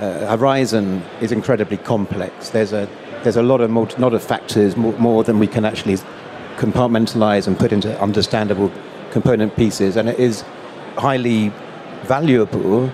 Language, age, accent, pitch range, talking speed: English, 40-59, British, 105-125 Hz, 155 wpm